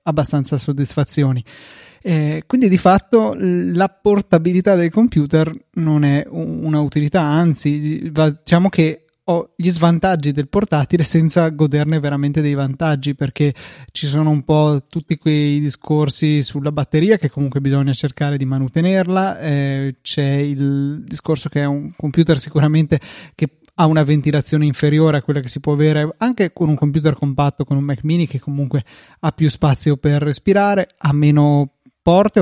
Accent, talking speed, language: native, 150 wpm, Italian